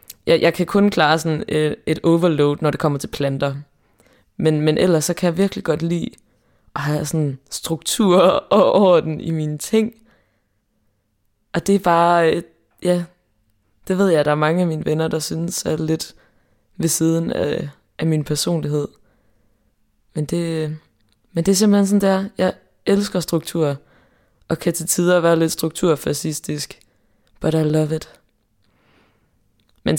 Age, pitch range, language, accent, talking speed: 20-39, 145-170 Hz, Danish, native, 165 wpm